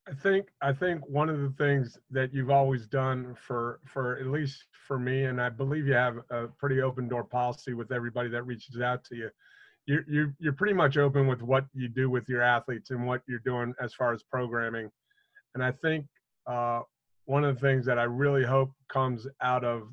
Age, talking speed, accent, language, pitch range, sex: 40-59, 215 wpm, American, English, 120-135 Hz, male